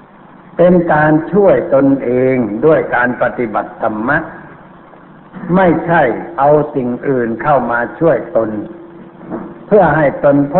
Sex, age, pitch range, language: male, 60-79, 125-170 Hz, Thai